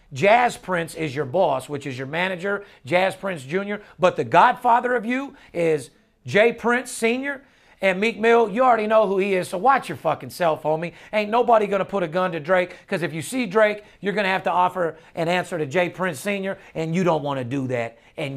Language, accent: English, American